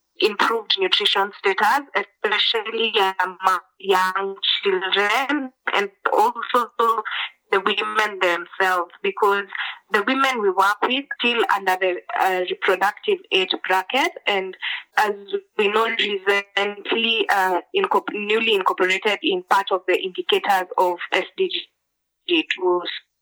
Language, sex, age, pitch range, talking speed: English, female, 20-39, 195-280 Hz, 110 wpm